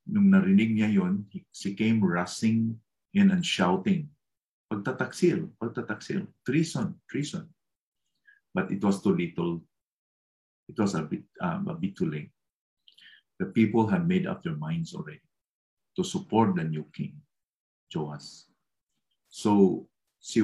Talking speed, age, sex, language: 130 wpm, 50-69, male, English